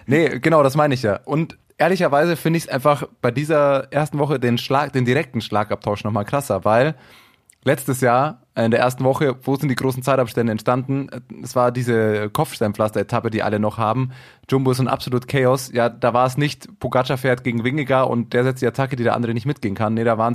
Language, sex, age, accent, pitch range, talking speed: German, male, 20-39, German, 110-130 Hz, 210 wpm